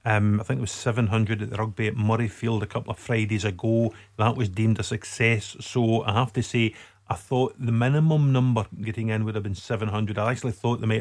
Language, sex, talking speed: English, male, 230 wpm